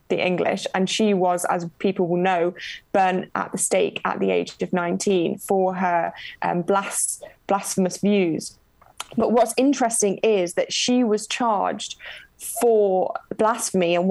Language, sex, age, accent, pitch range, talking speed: English, female, 20-39, British, 185-215 Hz, 145 wpm